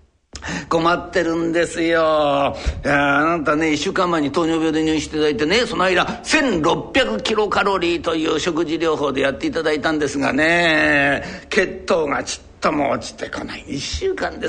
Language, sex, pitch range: Japanese, male, 160-215 Hz